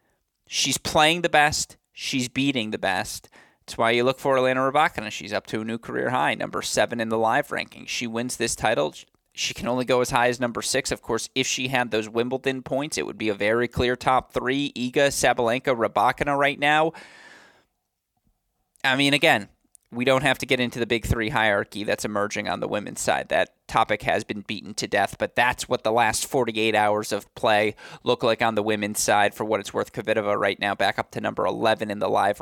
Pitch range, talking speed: 110-135 Hz, 220 wpm